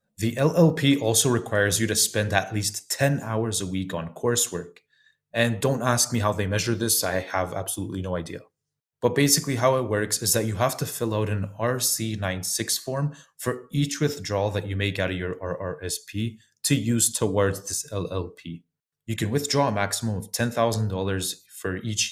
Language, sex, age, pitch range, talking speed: English, male, 20-39, 95-120 Hz, 180 wpm